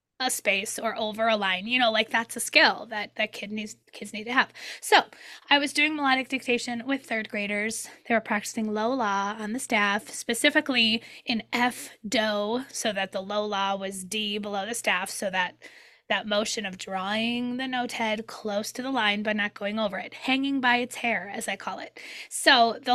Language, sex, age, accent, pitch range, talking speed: English, female, 20-39, American, 205-250 Hz, 205 wpm